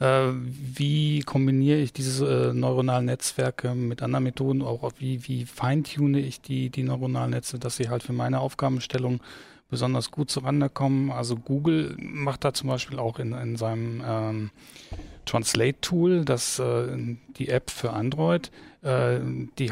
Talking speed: 145 wpm